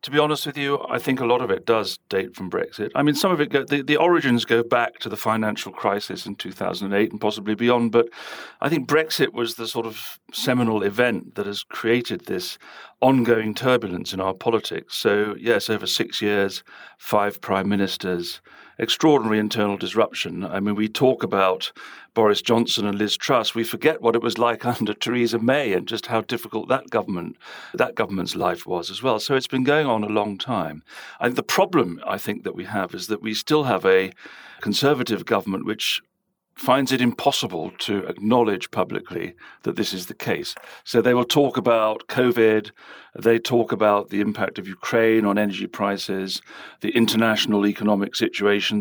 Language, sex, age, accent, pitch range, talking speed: English, male, 40-59, British, 105-125 Hz, 185 wpm